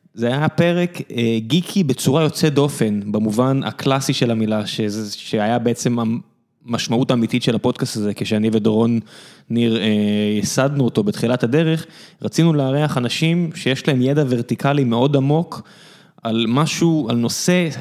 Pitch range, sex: 115-155 Hz, male